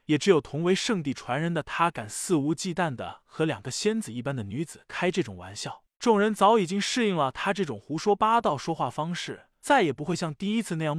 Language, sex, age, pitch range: Chinese, male, 20-39, 150-205 Hz